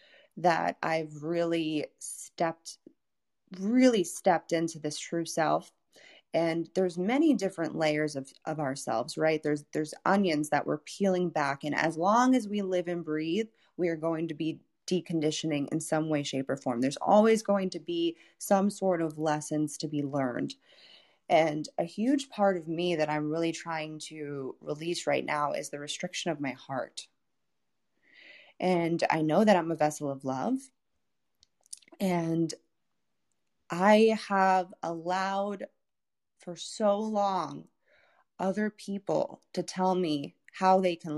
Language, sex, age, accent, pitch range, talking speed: English, female, 20-39, American, 155-190 Hz, 150 wpm